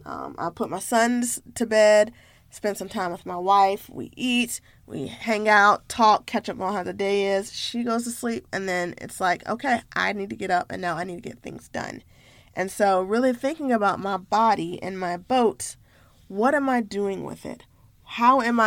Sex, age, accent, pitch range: female, 20-39, American, 185-230 Hz